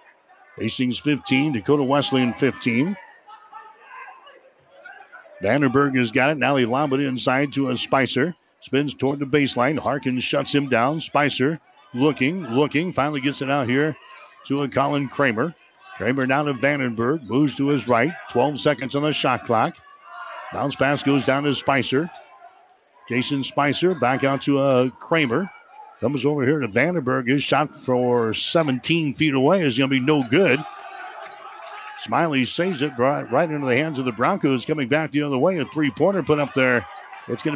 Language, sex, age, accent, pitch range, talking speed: English, male, 60-79, American, 135-155 Hz, 165 wpm